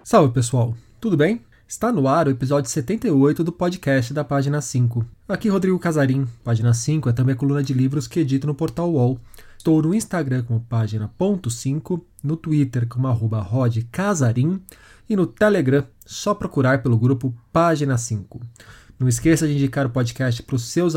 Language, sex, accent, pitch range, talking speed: Portuguese, male, Brazilian, 120-160 Hz, 170 wpm